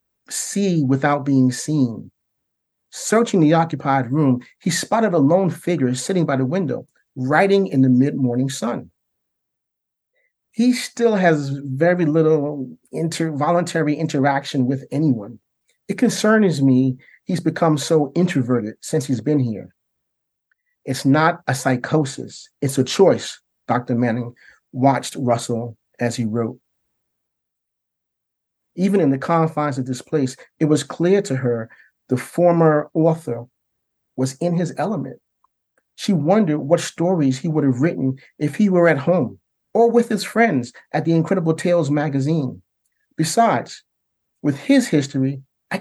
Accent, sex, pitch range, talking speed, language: American, male, 130-170 Hz, 135 wpm, English